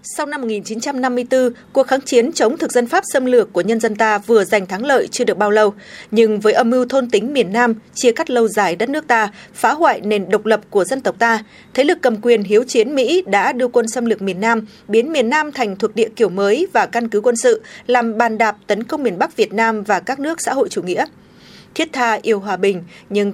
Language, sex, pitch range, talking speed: Vietnamese, female, 210-255 Hz, 250 wpm